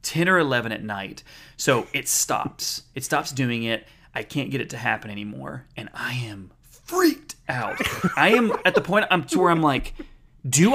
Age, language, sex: 30-49, English, male